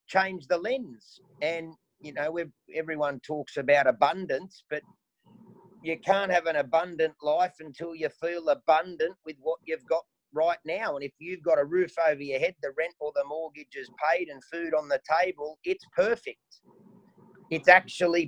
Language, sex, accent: English, male, Australian